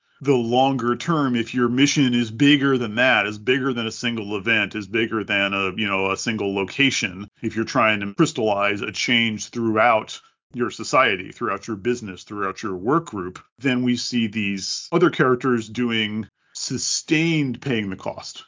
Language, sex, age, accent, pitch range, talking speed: English, male, 40-59, American, 105-130 Hz, 170 wpm